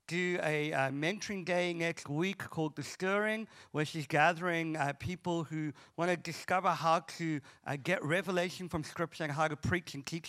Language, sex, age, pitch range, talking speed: English, male, 50-69, 155-185 Hz, 185 wpm